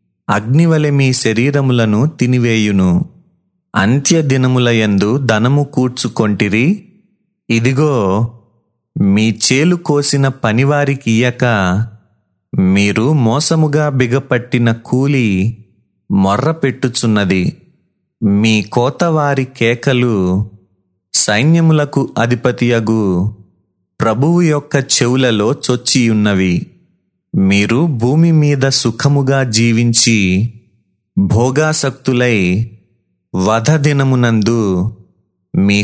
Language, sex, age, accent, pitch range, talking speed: Telugu, male, 30-49, native, 110-140 Hz, 55 wpm